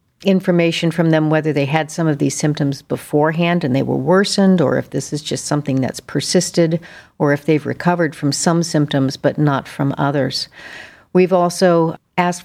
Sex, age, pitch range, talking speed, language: female, 50-69, 145-170 Hz, 180 wpm, English